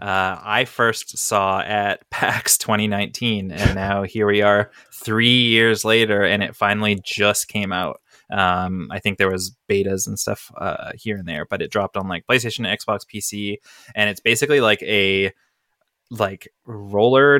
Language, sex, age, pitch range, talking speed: English, male, 20-39, 100-115 Hz, 165 wpm